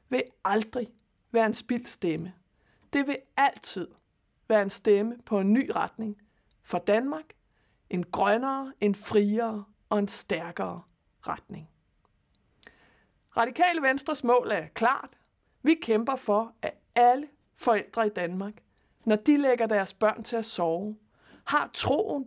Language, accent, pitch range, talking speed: Danish, native, 205-270 Hz, 130 wpm